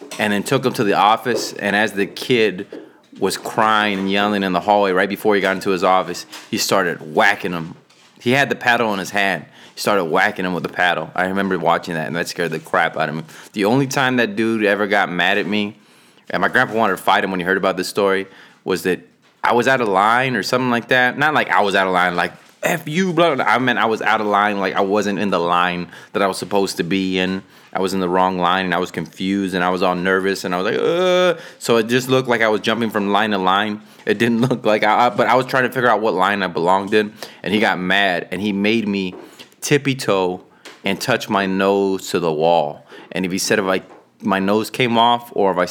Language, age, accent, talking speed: English, 20-39, American, 260 wpm